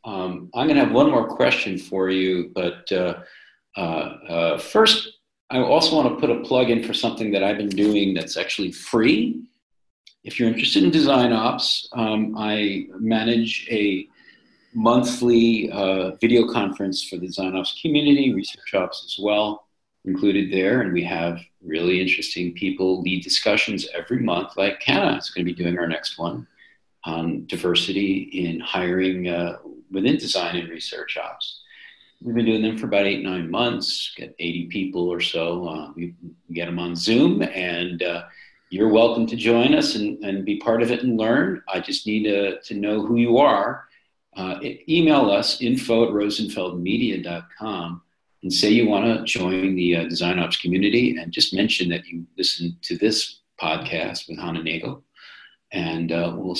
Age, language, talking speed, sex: 40-59, English, 170 wpm, male